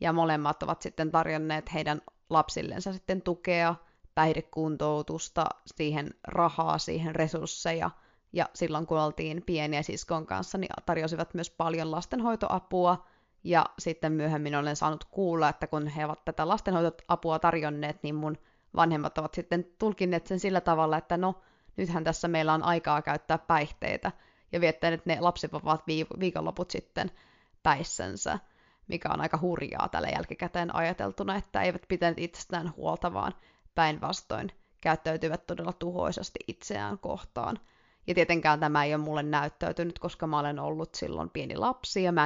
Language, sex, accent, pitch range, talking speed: Finnish, female, native, 155-175 Hz, 140 wpm